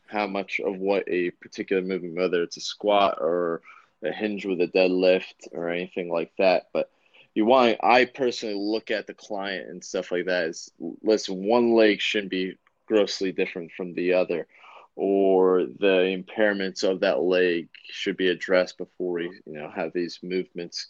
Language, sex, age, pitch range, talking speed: English, male, 20-39, 90-105 Hz, 180 wpm